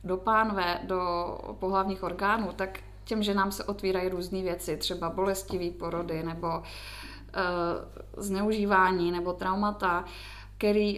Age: 20-39